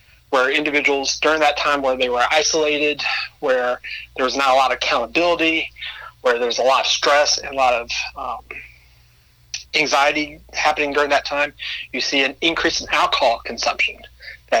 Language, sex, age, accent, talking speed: English, male, 40-59, American, 170 wpm